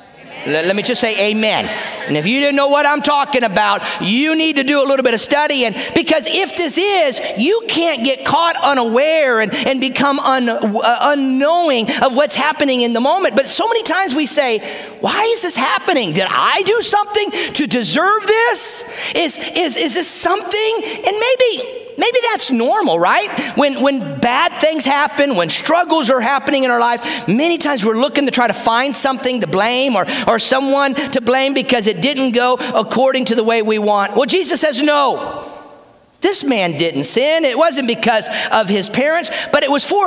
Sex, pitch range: male, 240-335 Hz